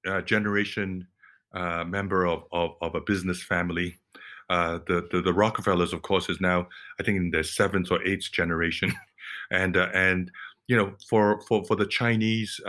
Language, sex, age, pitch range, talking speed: English, male, 50-69, 85-100 Hz, 175 wpm